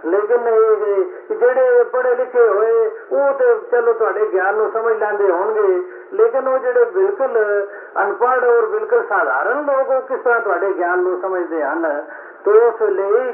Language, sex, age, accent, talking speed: Hindi, male, 50-69, native, 100 wpm